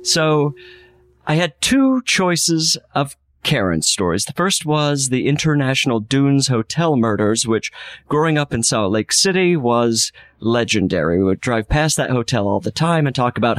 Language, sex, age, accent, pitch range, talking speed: English, male, 30-49, American, 110-155 Hz, 165 wpm